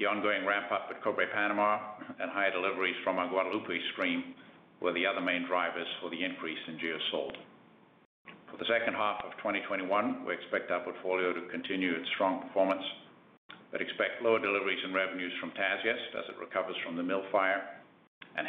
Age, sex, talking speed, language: 50-69, male, 180 wpm, English